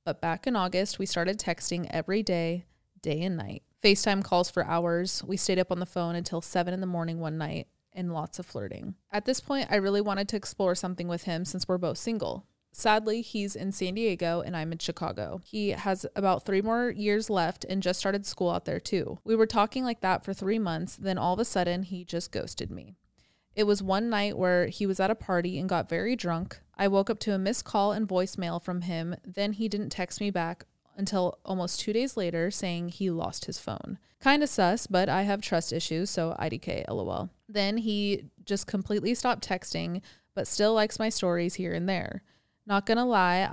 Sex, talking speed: female, 215 wpm